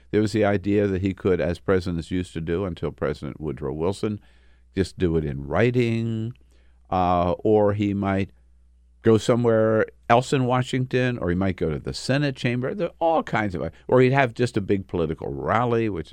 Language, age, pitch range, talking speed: English, 50-69, 70-115 Hz, 195 wpm